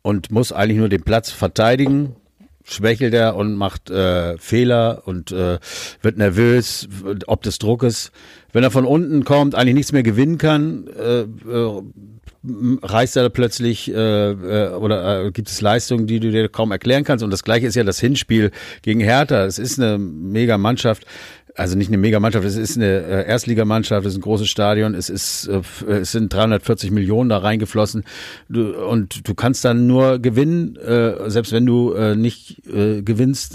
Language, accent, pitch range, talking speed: German, German, 95-115 Hz, 175 wpm